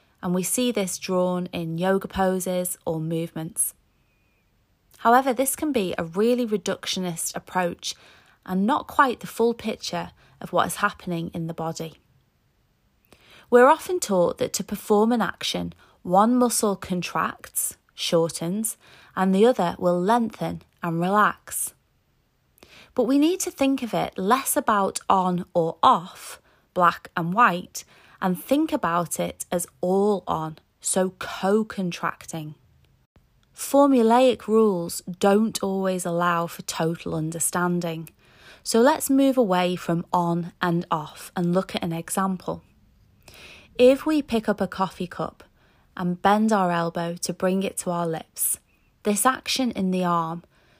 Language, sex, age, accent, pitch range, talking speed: English, female, 20-39, British, 170-225 Hz, 140 wpm